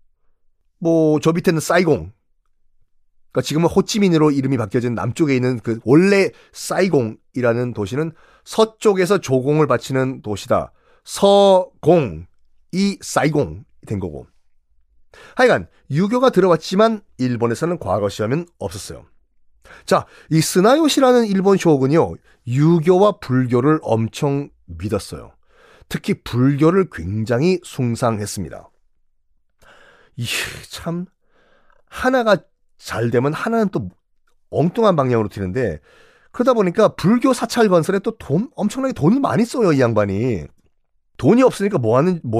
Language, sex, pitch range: Korean, male, 120-200 Hz